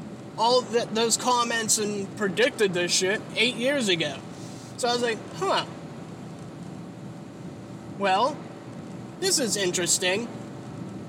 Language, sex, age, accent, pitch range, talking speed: English, male, 30-49, American, 190-265 Hz, 110 wpm